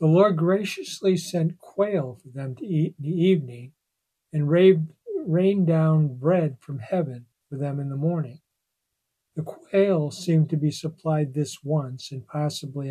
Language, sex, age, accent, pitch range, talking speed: English, male, 60-79, American, 140-170 Hz, 155 wpm